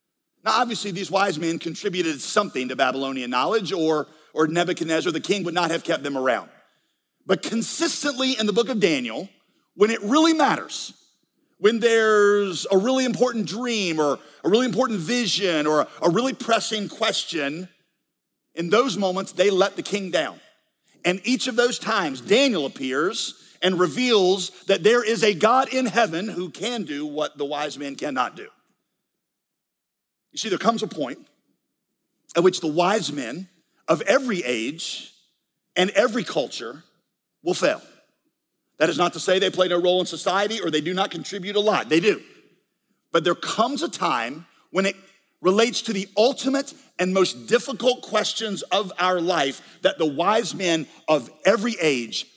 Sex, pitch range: male, 165-225 Hz